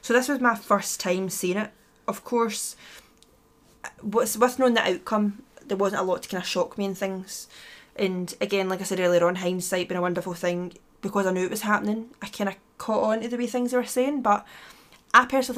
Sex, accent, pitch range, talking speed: female, British, 185-225 Hz, 225 wpm